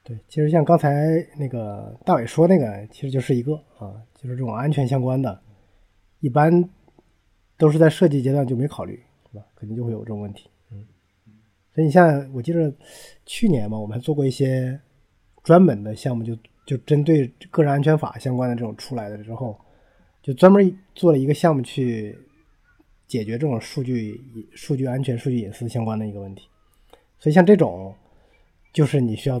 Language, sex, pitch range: Chinese, male, 115-155 Hz